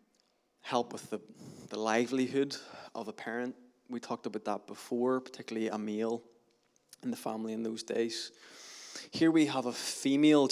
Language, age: English, 20-39